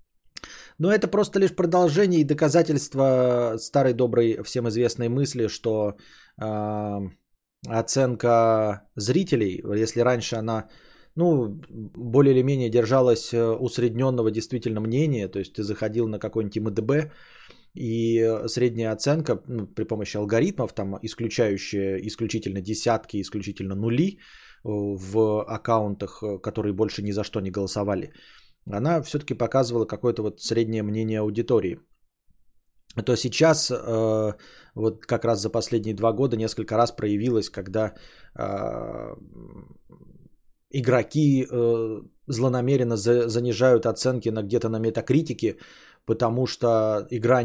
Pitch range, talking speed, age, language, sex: 110-125 Hz, 110 wpm, 20-39, Bulgarian, male